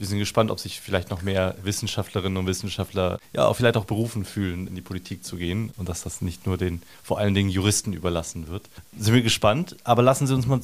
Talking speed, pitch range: 230 wpm, 95-120 Hz